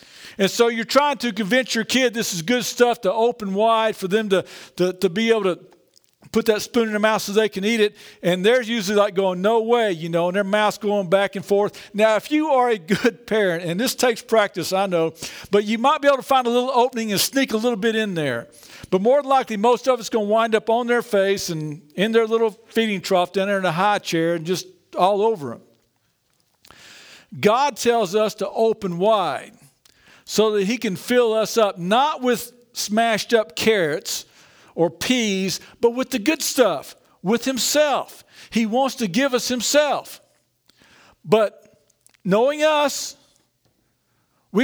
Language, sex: English, male